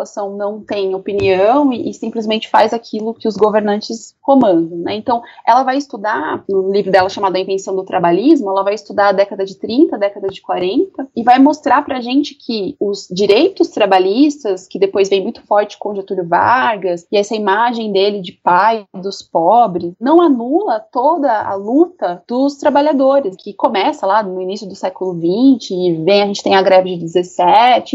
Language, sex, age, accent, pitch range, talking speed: Portuguese, female, 30-49, Brazilian, 195-275 Hz, 180 wpm